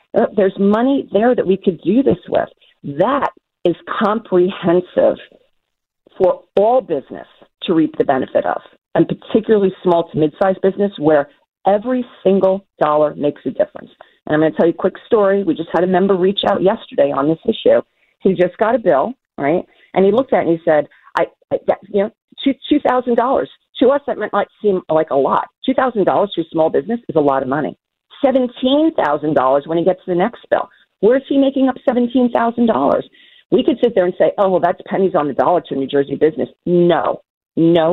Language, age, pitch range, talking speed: English, 40-59, 155-230 Hz, 195 wpm